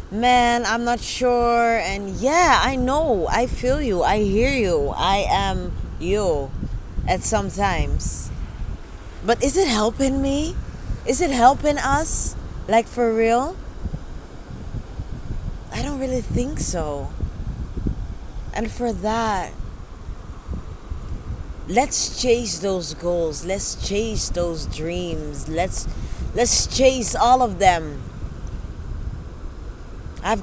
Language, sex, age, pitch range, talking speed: English, female, 20-39, 205-270 Hz, 110 wpm